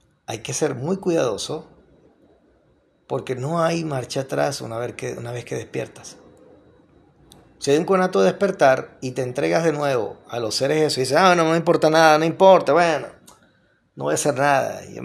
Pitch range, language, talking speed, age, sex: 125-150 Hz, Spanish, 195 wpm, 30-49, male